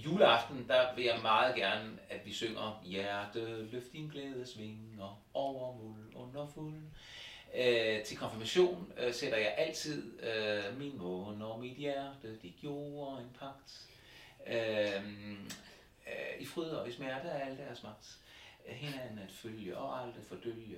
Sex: male